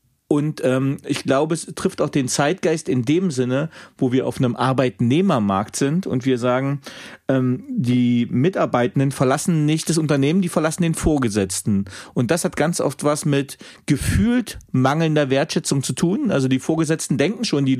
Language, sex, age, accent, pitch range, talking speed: German, male, 40-59, German, 125-160 Hz, 170 wpm